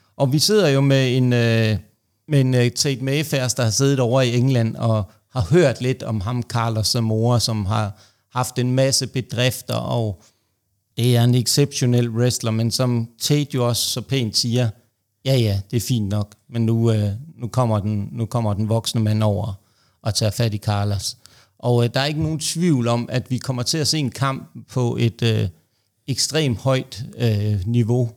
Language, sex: Danish, male